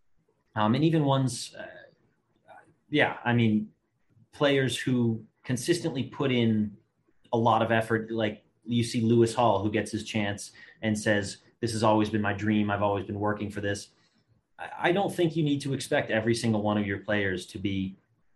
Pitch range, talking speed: 100-120 Hz, 185 wpm